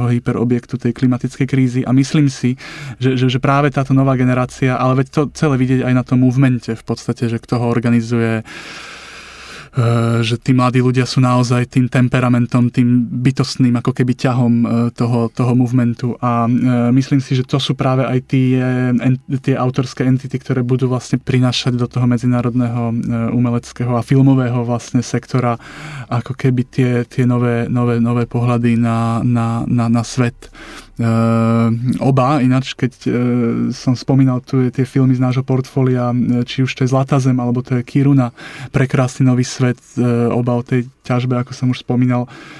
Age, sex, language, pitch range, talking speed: 20-39, male, Slovak, 120-130 Hz, 165 wpm